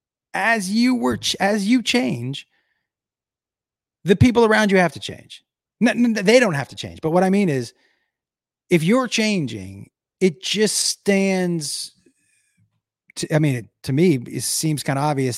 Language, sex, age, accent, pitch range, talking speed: English, male, 30-49, American, 135-195 Hz, 170 wpm